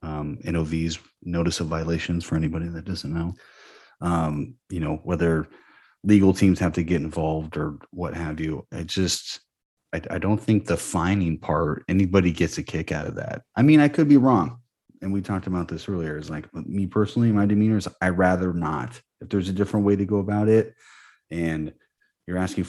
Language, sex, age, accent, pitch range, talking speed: English, male, 30-49, American, 80-100 Hz, 200 wpm